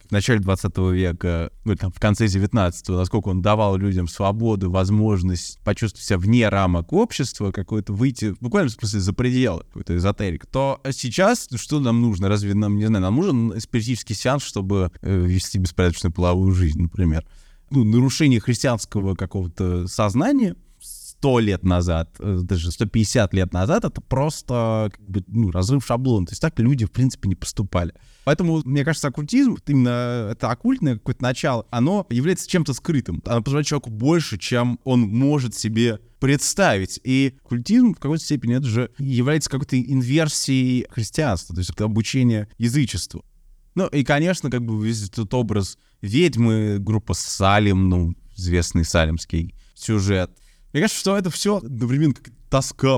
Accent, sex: native, male